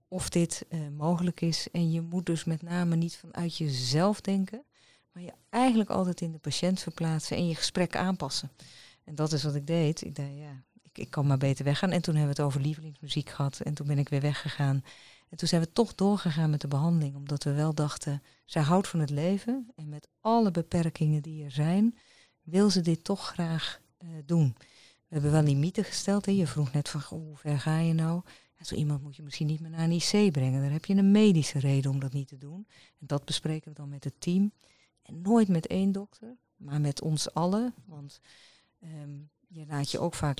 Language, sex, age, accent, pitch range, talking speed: Dutch, female, 40-59, Dutch, 150-180 Hz, 215 wpm